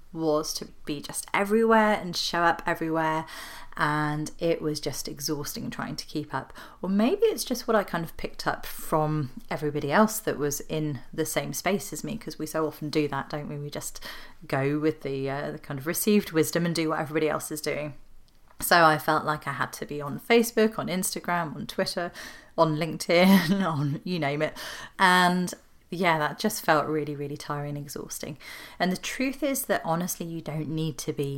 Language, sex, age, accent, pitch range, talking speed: English, female, 30-49, British, 150-180 Hz, 205 wpm